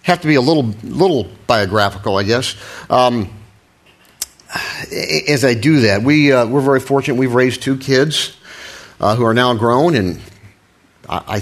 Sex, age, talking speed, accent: male, 50-69, 160 wpm, American